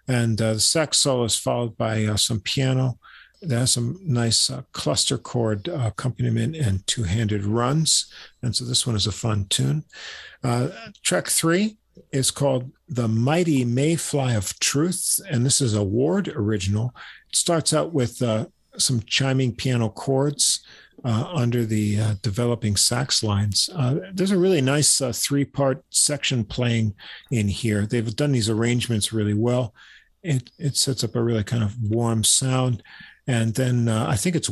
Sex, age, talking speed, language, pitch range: male, 50-69, 165 wpm, English, 110-130 Hz